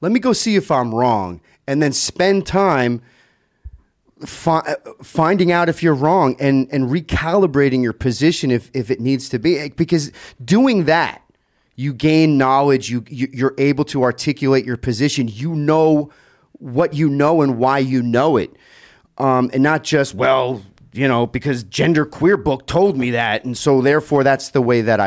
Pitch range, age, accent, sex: 120-160 Hz, 30-49, American, male